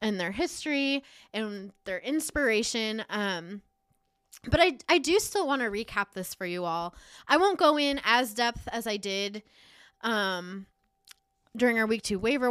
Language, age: English, 20-39